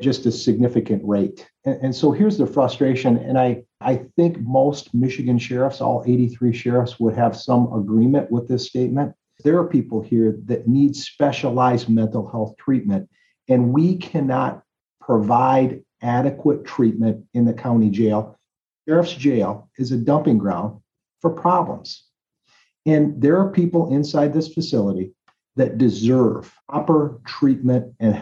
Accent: American